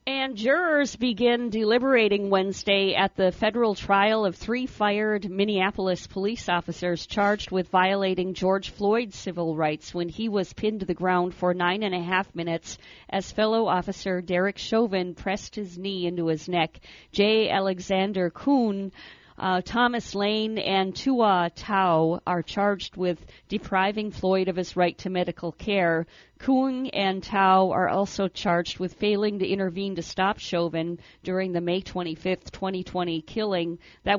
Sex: female